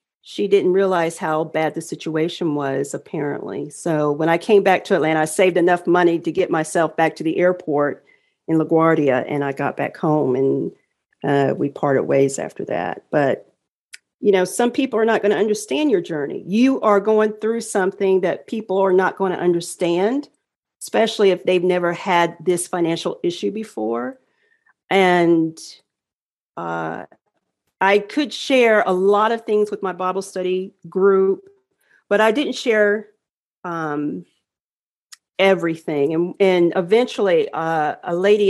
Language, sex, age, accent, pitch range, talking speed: English, female, 40-59, American, 165-210 Hz, 155 wpm